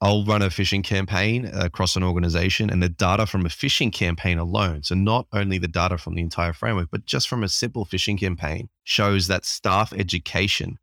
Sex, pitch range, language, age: male, 90-100 Hz, English, 20-39